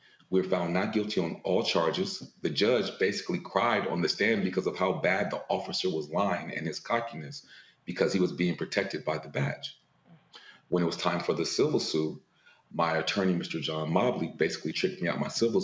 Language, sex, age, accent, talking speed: English, male, 40-59, American, 205 wpm